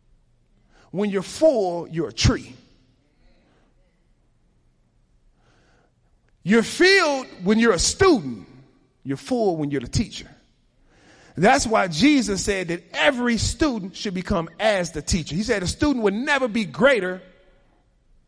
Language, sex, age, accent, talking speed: English, male, 40-59, American, 125 wpm